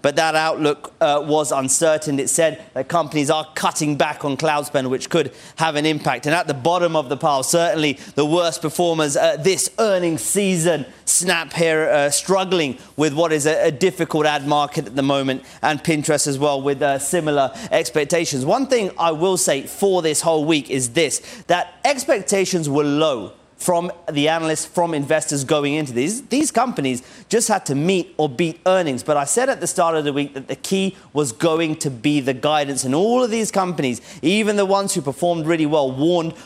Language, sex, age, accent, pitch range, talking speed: English, male, 30-49, British, 150-180 Hz, 200 wpm